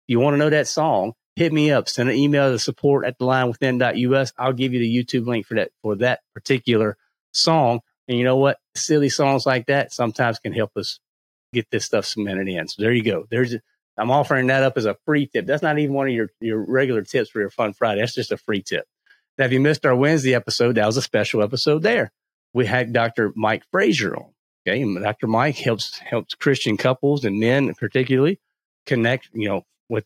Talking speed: 220 wpm